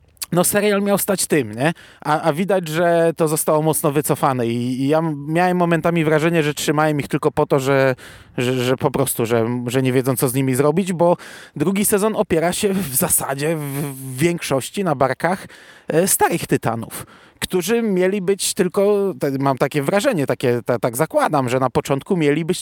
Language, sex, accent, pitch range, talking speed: Polish, male, native, 140-190 Hz, 170 wpm